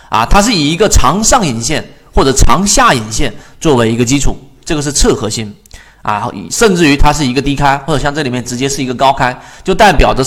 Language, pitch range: Chinese, 125-175 Hz